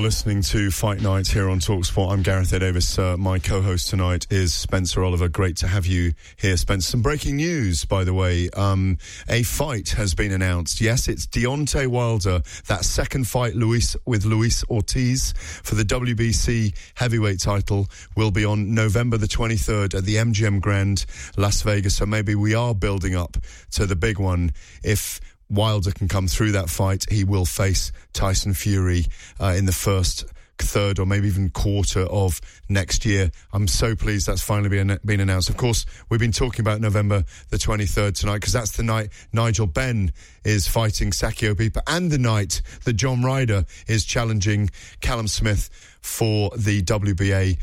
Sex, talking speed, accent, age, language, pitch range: male, 180 wpm, British, 30-49, English, 95-110 Hz